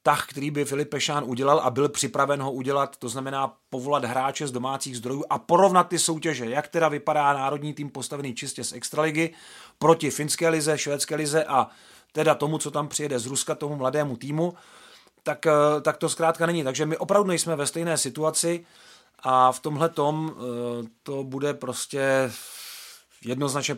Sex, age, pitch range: male, 30-49, 125-150 Hz